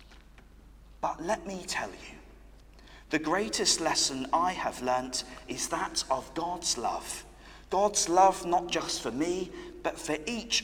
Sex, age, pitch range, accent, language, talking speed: male, 40-59, 125-190 Hz, British, English, 140 wpm